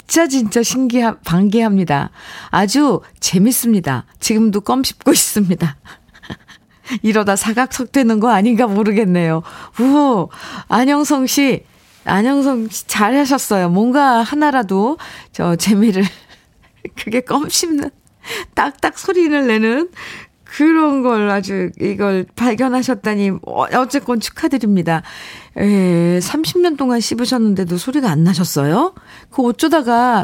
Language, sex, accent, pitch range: Korean, female, native, 180-260 Hz